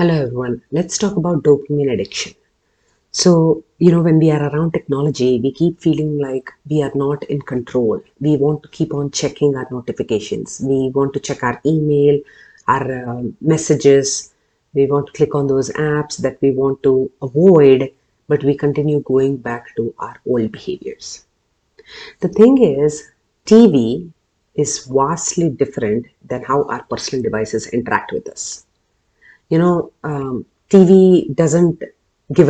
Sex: female